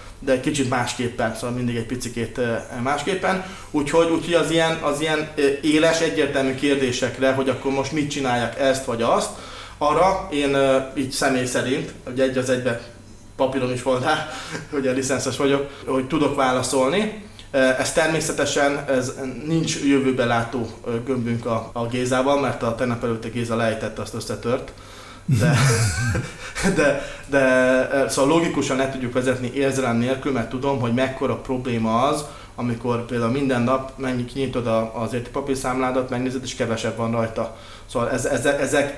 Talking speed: 150 wpm